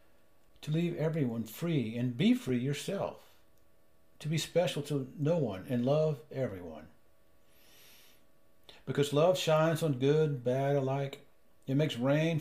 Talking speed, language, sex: 130 wpm, English, male